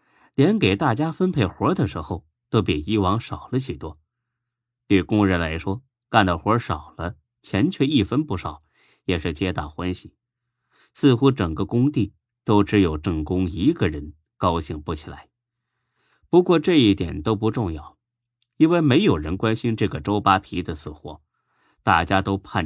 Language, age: Chinese, 30-49